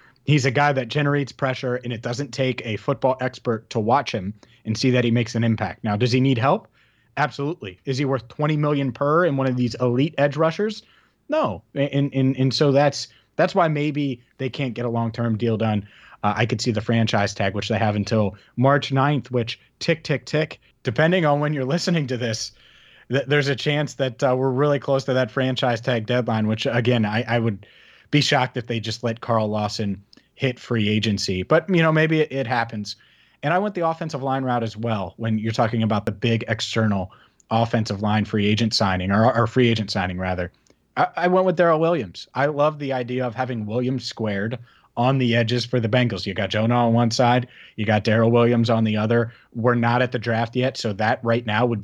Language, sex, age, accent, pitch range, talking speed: English, male, 30-49, American, 110-135 Hz, 220 wpm